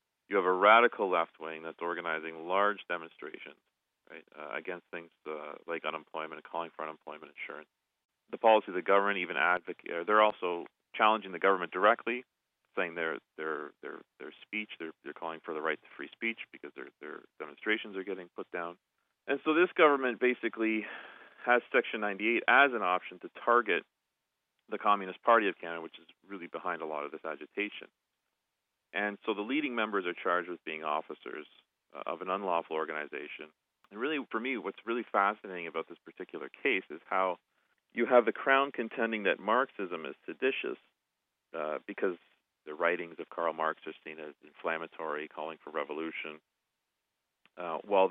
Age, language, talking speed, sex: 40-59, English, 170 wpm, male